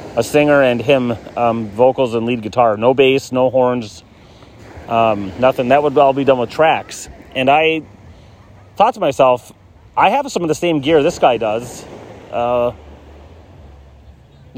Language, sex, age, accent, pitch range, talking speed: English, male, 30-49, American, 105-140 Hz, 155 wpm